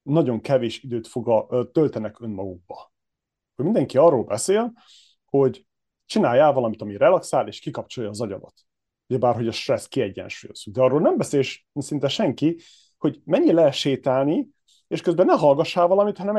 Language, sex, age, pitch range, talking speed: Hungarian, male, 30-49, 115-145 Hz, 145 wpm